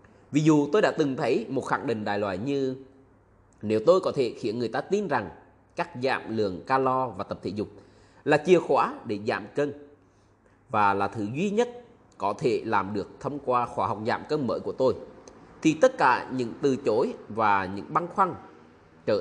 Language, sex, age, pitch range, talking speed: Vietnamese, male, 20-39, 105-170 Hz, 200 wpm